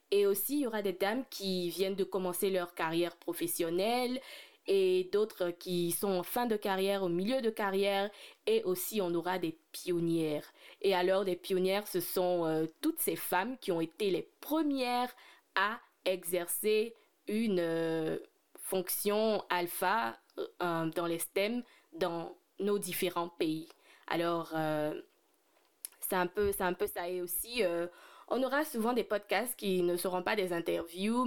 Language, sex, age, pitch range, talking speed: French, female, 20-39, 175-225 Hz, 160 wpm